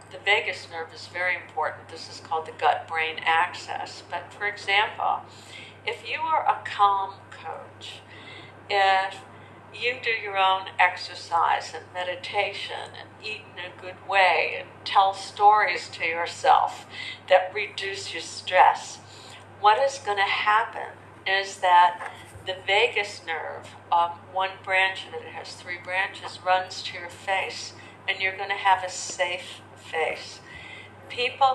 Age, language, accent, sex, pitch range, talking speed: 60-79, English, American, female, 180-260 Hz, 140 wpm